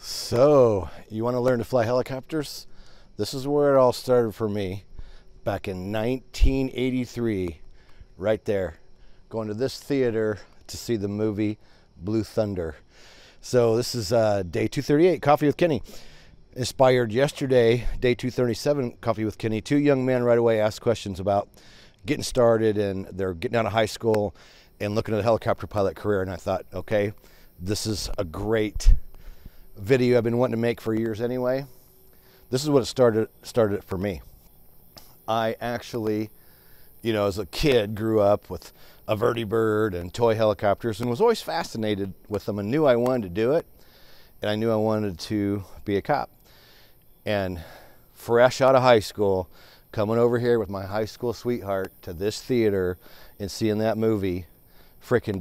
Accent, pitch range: American, 100-120 Hz